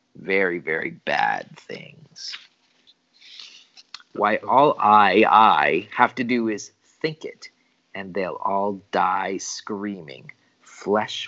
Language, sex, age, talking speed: English, male, 40-59, 105 wpm